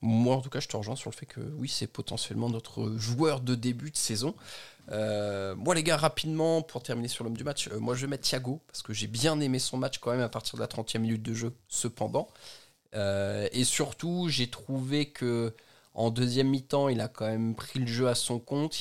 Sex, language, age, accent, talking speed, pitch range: male, French, 20-39, French, 235 wpm, 110-135 Hz